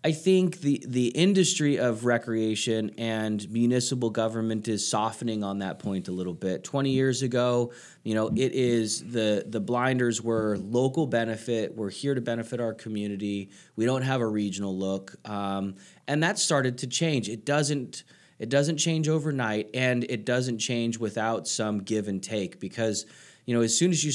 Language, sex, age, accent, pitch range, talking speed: English, male, 30-49, American, 105-125 Hz, 175 wpm